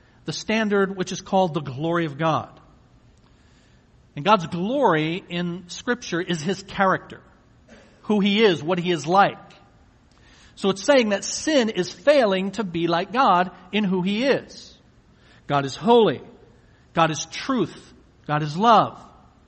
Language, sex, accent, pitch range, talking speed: English, male, American, 150-200 Hz, 150 wpm